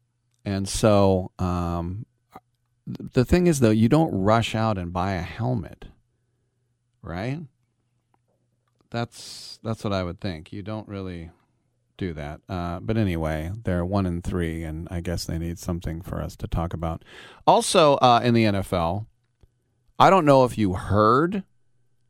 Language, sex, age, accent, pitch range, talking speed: English, male, 40-59, American, 95-120 Hz, 150 wpm